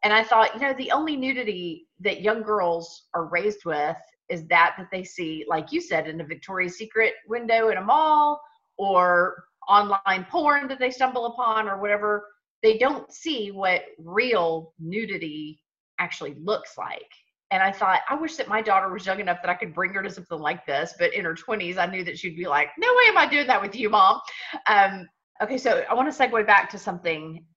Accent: American